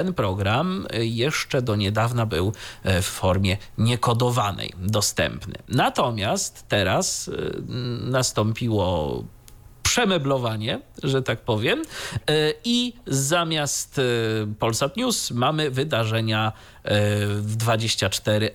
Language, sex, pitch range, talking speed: Polish, male, 110-165 Hz, 80 wpm